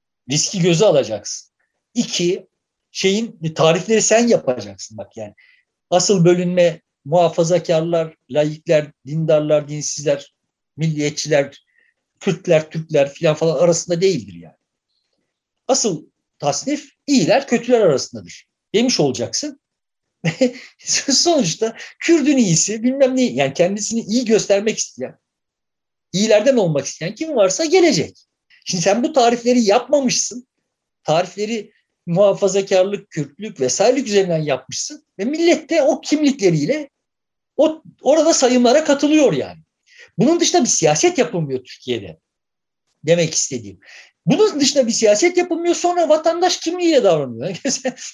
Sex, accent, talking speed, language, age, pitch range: male, native, 105 wpm, Turkish, 60-79, 170-275 Hz